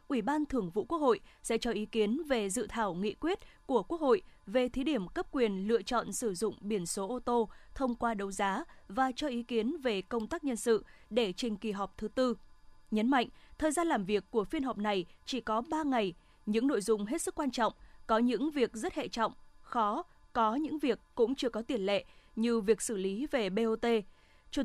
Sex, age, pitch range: female, 20-39, 220-275 Hz